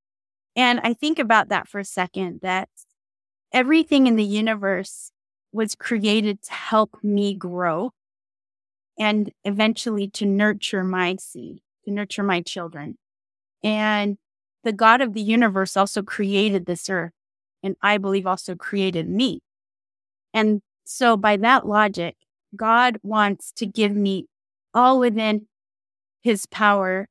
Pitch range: 185-225 Hz